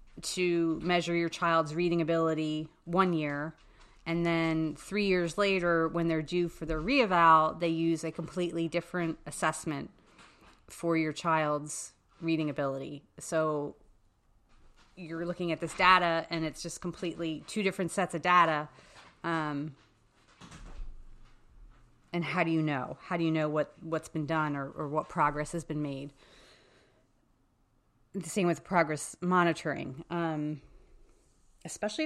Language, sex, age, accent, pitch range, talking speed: English, female, 30-49, American, 150-175 Hz, 135 wpm